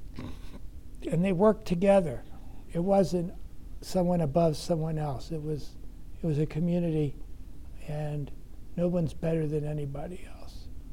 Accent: American